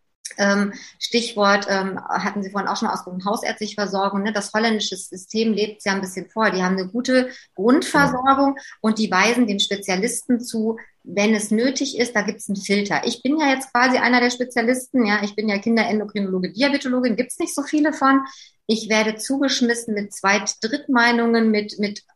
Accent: German